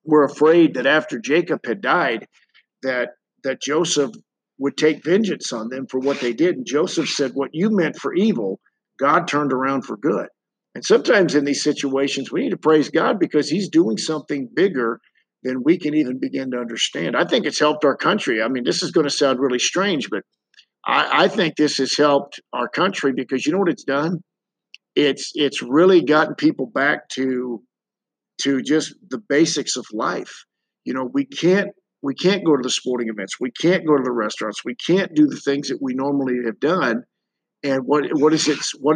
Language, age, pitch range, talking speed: English, 50-69, 135-175 Hz, 200 wpm